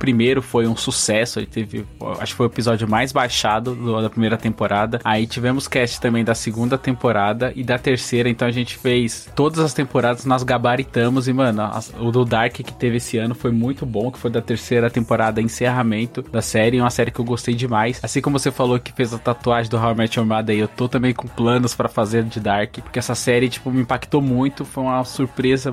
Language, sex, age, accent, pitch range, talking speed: Portuguese, male, 20-39, Brazilian, 120-140 Hz, 215 wpm